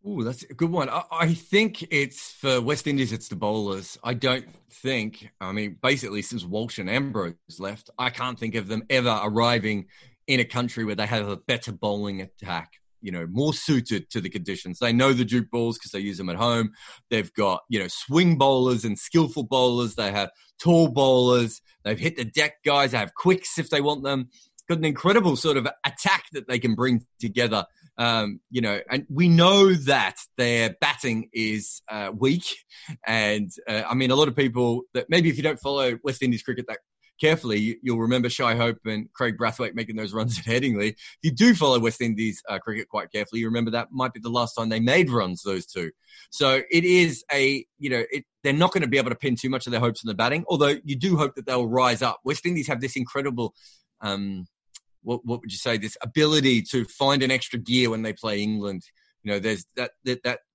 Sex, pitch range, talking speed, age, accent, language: male, 110-140 Hz, 220 wpm, 30-49, Australian, English